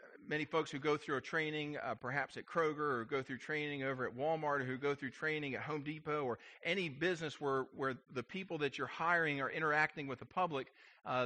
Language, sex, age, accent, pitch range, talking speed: English, male, 40-59, American, 130-165 Hz, 225 wpm